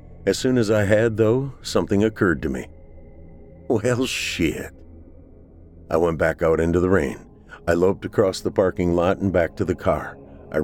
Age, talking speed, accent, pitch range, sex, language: 50-69, 175 wpm, American, 80-110 Hz, male, English